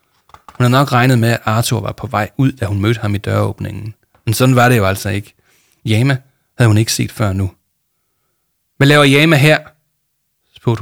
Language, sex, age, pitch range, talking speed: Danish, male, 30-49, 105-140 Hz, 200 wpm